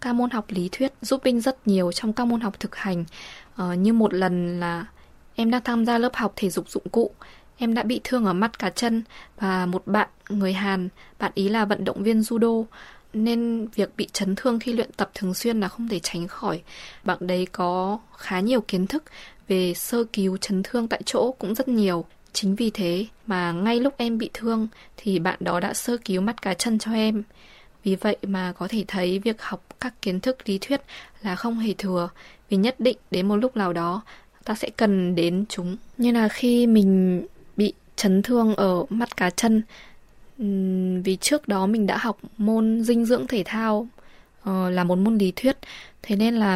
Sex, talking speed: female, 210 wpm